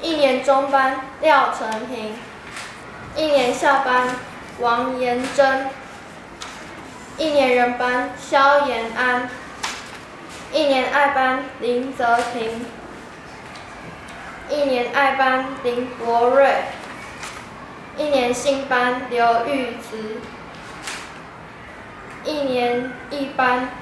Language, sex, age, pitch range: Chinese, female, 10-29, 245-275 Hz